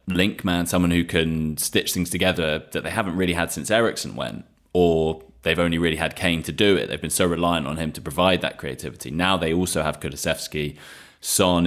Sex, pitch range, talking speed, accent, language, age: male, 80-90 Hz, 210 wpm, British, English, 20-39